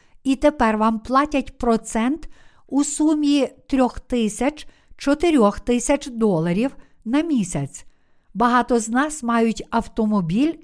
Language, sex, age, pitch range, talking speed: Ukrainian, female, 50-69, 215-270 Hz, 100 wpm